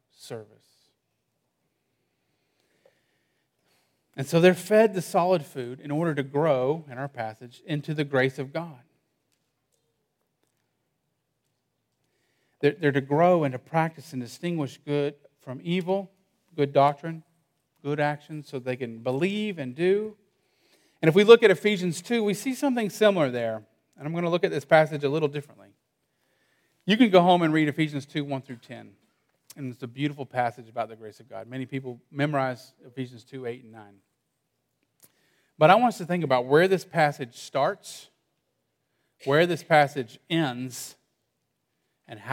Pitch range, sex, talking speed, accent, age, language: 130-170 Hz, male, 155 wpm, American, 40-59, English